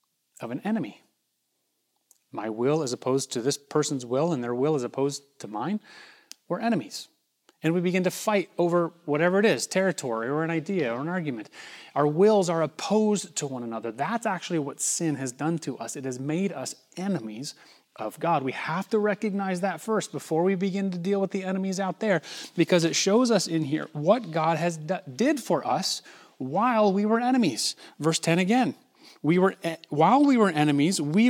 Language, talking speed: English, 190 wpm